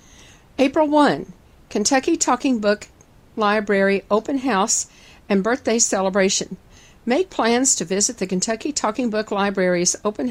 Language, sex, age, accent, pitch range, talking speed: English, female, 50-69, American, 185-235 Hz, 120 wpm